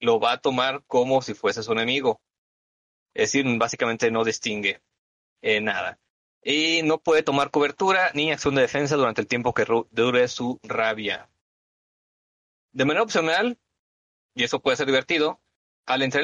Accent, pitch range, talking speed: Mexican, 115-155 Hz, 155 wpm